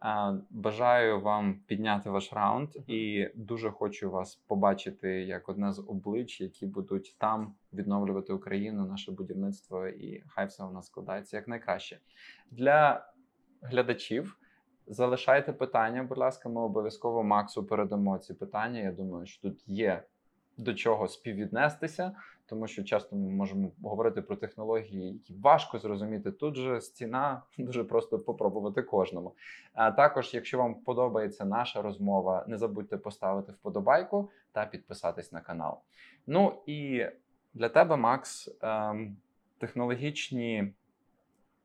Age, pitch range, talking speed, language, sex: 20-39, 105-140 Hz, 125 wpm, Ukrainian, male